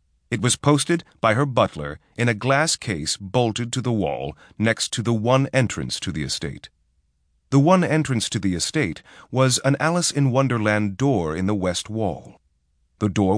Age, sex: 30-49, male